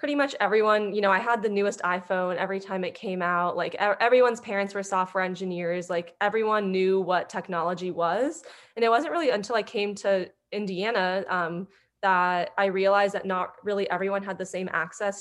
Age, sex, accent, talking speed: 20-39, female, American, 185 wpm